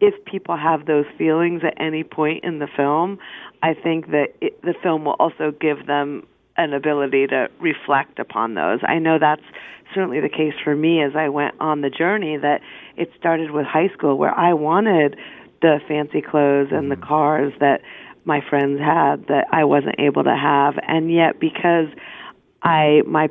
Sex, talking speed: female, 185 wpm